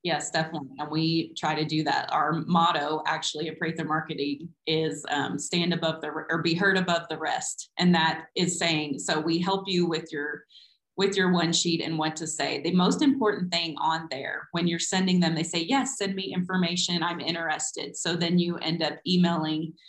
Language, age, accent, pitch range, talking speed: English, 30-49, American, 160-180 Hz, 205 wpm